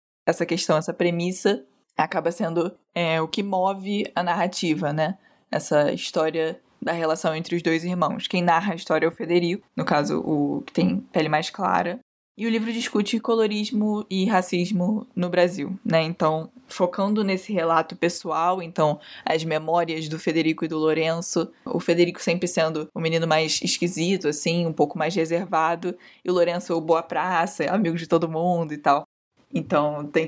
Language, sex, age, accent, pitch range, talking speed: Portuguese, female, 10-29, Brazilian, 165-190 Hz, 170 wpm